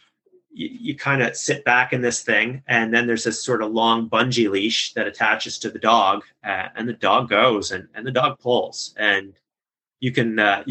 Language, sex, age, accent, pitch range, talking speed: English, male, 30-49, American, 110-145 Hz, 200 wpm